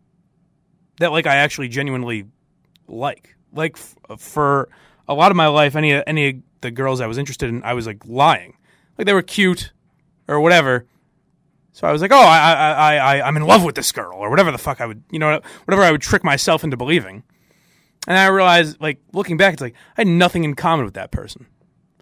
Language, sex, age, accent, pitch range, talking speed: English, male, 30-49, American, 135-175 Hz, 220 wpm